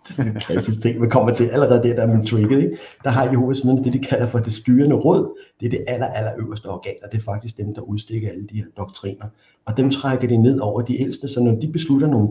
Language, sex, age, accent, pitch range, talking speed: Danish, male, 60-79, native, 105-130 Hz, 275 wpm